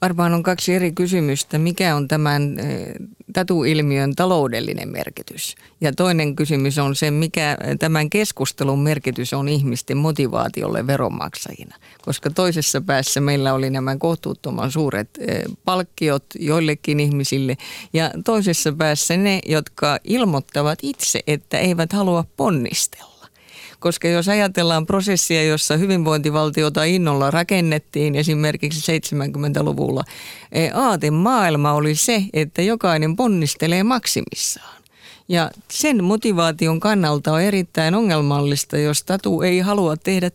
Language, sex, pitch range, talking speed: Finnish, female, 150-185 Hz, 115 wpm